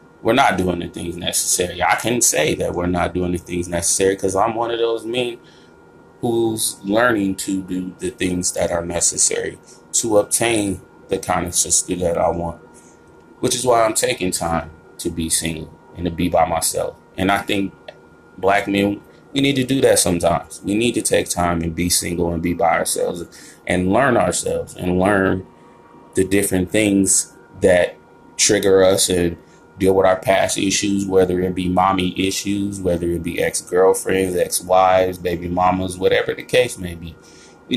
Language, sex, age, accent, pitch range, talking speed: English, male, 20-39, American, 85-100 Hz, 180 wpm